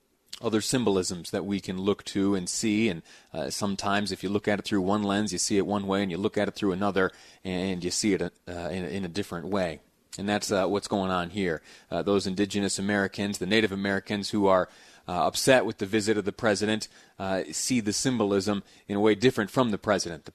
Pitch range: 100-125 Hz